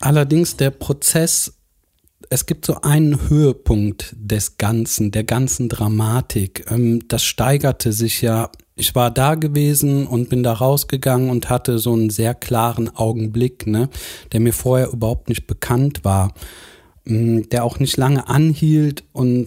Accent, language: German, German